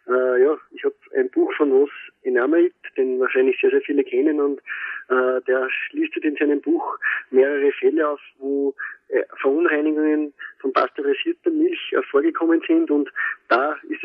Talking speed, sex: 160 wpm, male